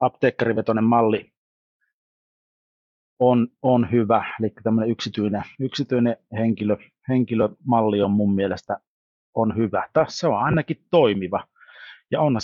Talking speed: 105 wpm